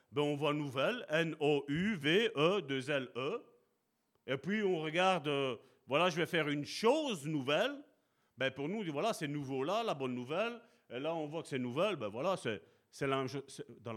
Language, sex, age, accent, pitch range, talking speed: French, male, 40-59, French, 140-200 Hz, 180 wpm